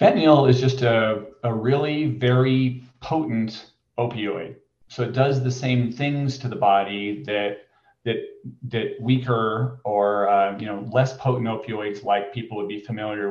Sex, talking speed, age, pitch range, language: male, 155 wpm, 30-49, 105-130 Hz, English